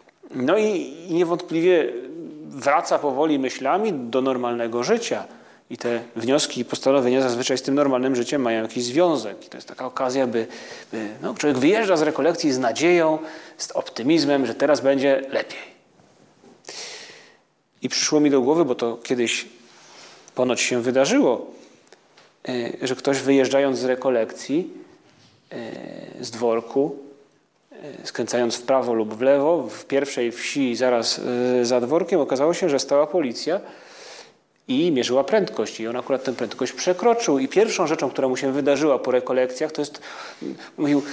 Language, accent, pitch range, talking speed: Polish, native, 125-175 Hz, 145 wpm